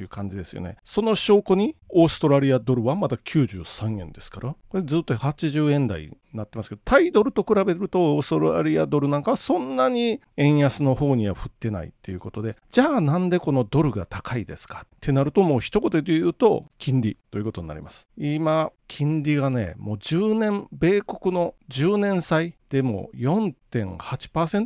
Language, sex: Japanese, male